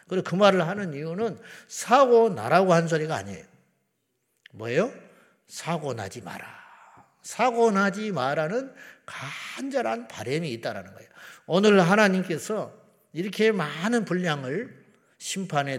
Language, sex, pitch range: Korean, male, 135-210 Hz